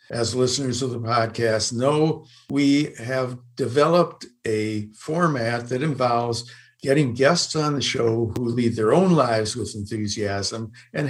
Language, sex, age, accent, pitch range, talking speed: English, male, 60-79, American, 115-140 Hz, 140 wpm